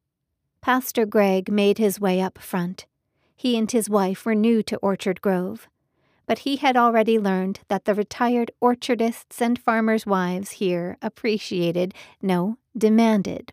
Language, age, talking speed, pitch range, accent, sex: English, 40-59, 140 wpm, 195-230 Hz, American, female